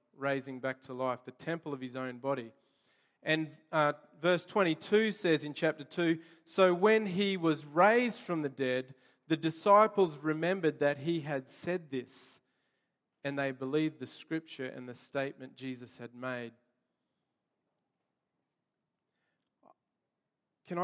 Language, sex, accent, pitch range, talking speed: English, male, Australian, 140-195 Hz, 130 wpm